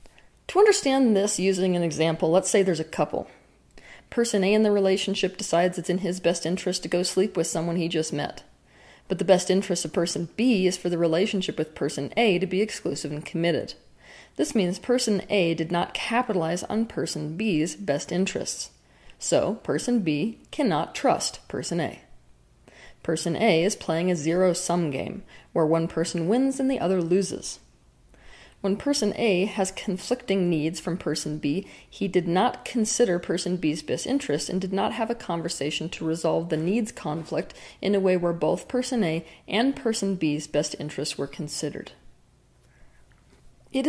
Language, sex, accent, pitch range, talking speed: English, female, American, 165-210 Hz, 175 wpm